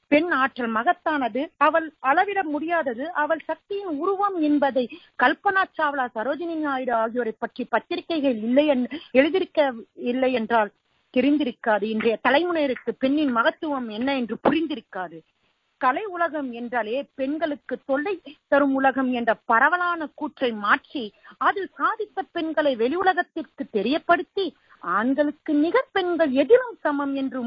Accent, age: native, 40-59